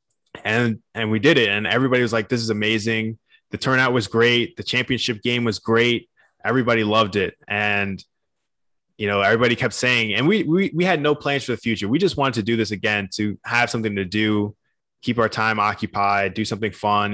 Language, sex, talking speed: English, male, 205 wpm